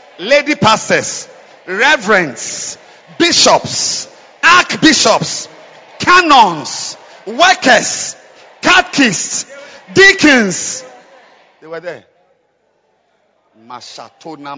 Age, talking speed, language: 50-69, 55 wpm, English